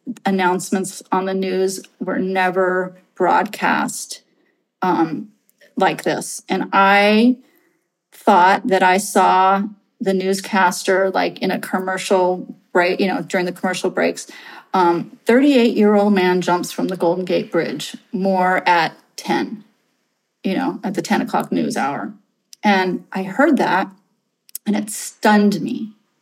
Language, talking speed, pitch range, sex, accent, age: English, 130 wpm, 185-220 Hz, female, American, 30-49